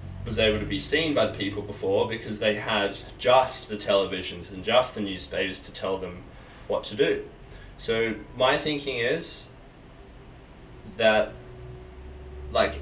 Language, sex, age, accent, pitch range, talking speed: English, male, 20-39, Australian, 100-120 Hz, 145 wpm